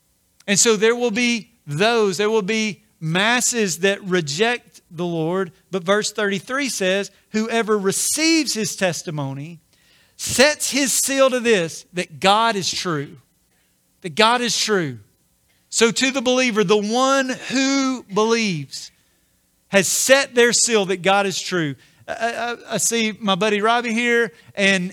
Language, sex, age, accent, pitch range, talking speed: English, male, 40-59, American, 185-230 Hz, 140 wpm